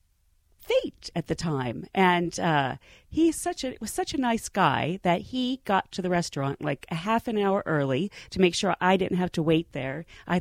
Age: 40-59